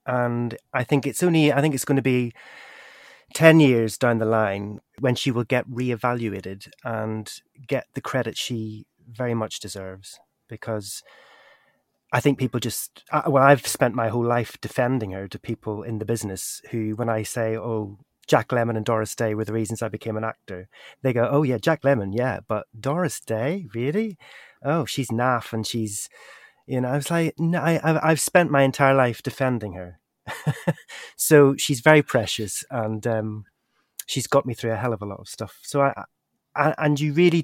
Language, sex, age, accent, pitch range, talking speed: English, male, 30-49, British, 110-140 Hz, 185 wpm